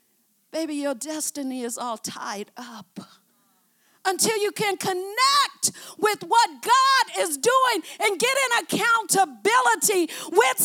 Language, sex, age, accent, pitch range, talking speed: English, female, 50-69, American, 265-395 Hz, 120 wpm